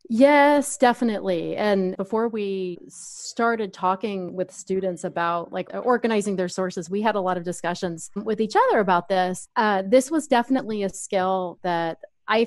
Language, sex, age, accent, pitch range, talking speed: English, female, 30-49, American, 180-210 Hz, 160 wpm